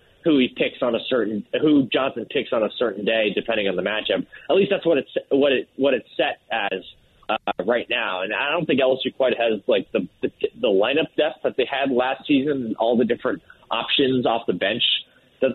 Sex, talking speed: male, 230 wpm